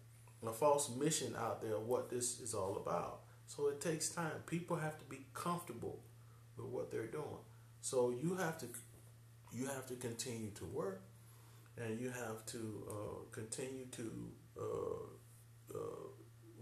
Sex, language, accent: male, English, American